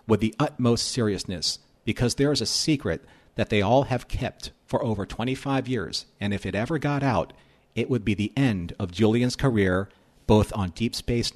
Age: 40-59